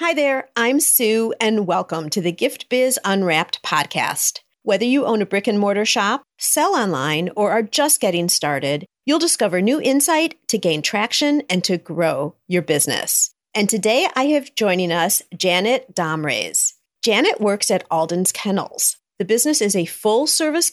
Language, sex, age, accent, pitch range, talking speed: English, female, 40-59, American, 175-255 Hz, 160 wpm